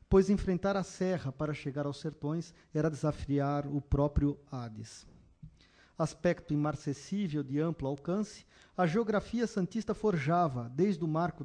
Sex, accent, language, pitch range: male, Brazilian, Portuguese, 145-190 Hz